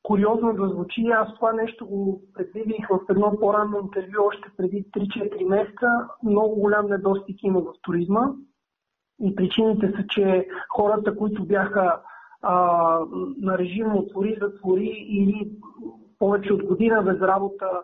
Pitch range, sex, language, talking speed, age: 190-220 Hz, male, Bulgarian, 135 wpm, 50-69